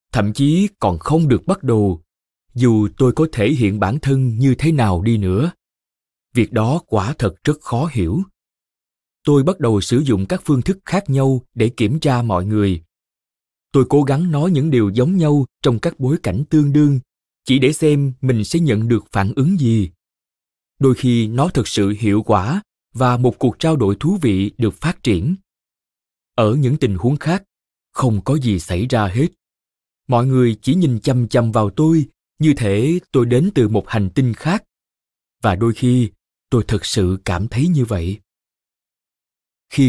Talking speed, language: 180 wpm, Vietnamese